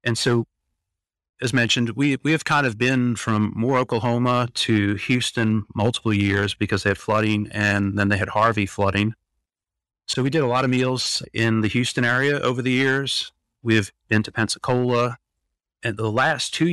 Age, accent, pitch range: 40-59, American, 100-120 Hz